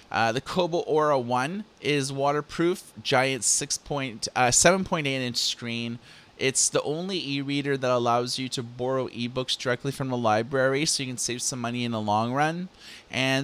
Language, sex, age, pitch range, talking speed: English, male, 30-49, 115-135 Hz, 160 wpm